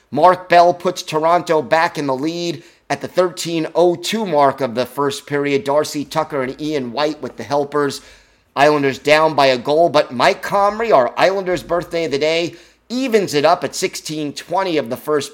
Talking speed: 180 wpm